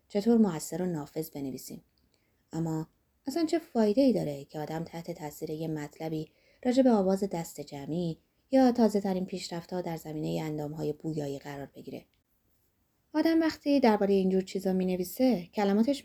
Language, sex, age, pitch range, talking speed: Persian, female, 30-49, 160-235 Hz, 155 wpm